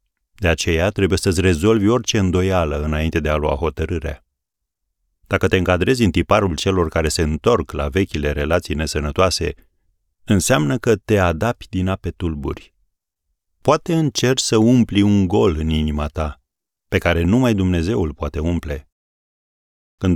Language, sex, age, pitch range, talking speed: Romanian, male, 40-59, 80-105 Hz, 145 wpm